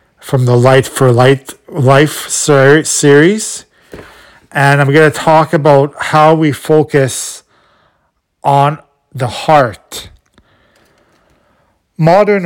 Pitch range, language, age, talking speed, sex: 135-165 Hz, English, 40-59, 90 wpm, male